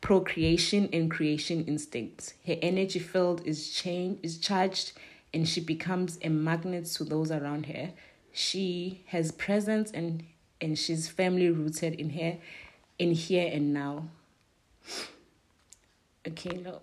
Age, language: 30-49, English